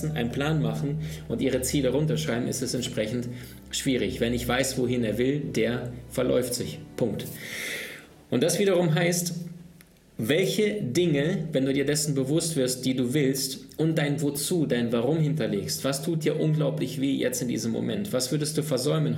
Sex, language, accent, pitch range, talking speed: male, German, German, 125-155 Hz, 170 wpm